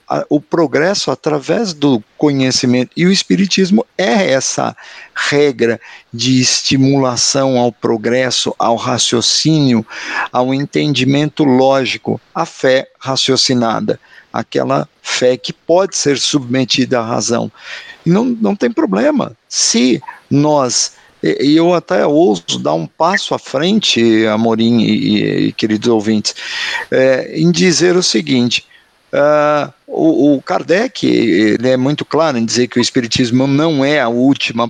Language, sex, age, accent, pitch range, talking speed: Portuguese, male, 50-69, Brazilian, 125-170 Hz, 125 wpm